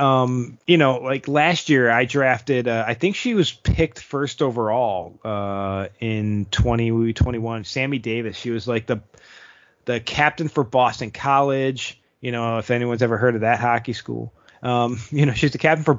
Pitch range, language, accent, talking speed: 115-140 Hz, English, American, 175 wpm